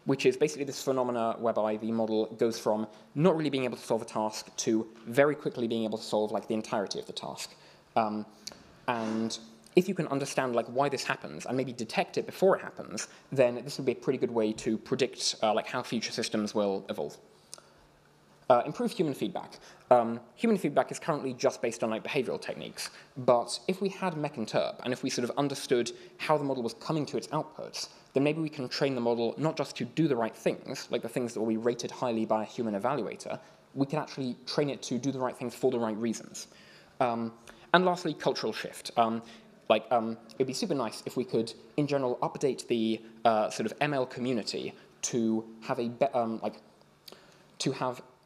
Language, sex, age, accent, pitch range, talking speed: English, male, 20-39, British, 115-140 Hz, 215 wpm